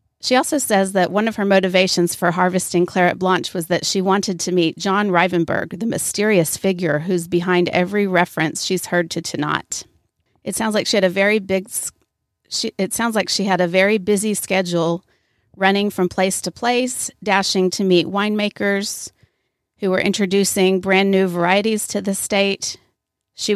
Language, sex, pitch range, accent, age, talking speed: English, female, 180-205 Hz, American, 40-59, 170 wpm